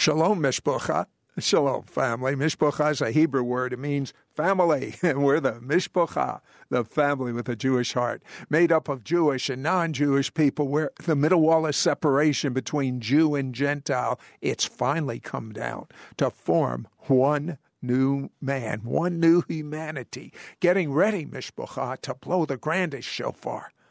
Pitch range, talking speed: 140-190 Hz, 150 wpm